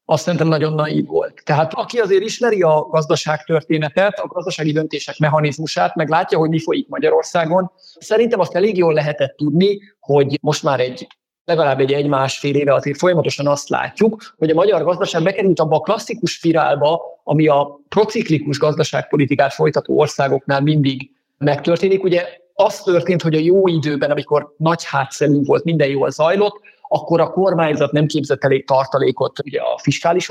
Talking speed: 160 wpm